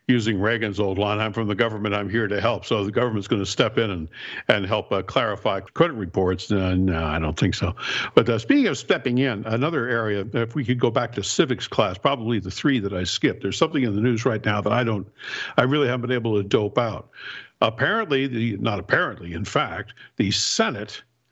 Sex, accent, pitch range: male, American, 105-130 Hz